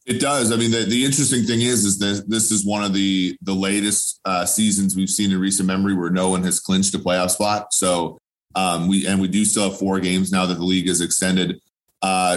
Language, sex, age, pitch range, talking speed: English, male, 30-49, 90-105 Hz, 245 wpm